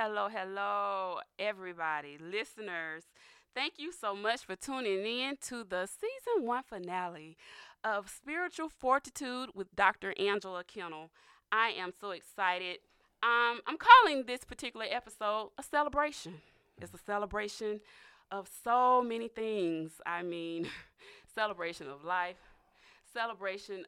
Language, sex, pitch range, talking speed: English, female, 180-235 Hz, 120 wpm